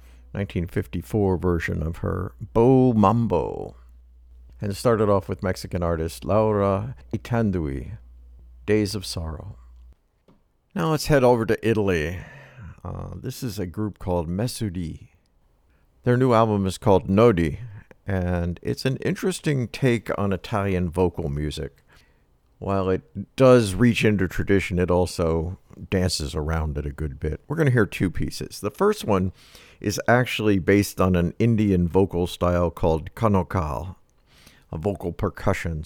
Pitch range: 85-110 Hz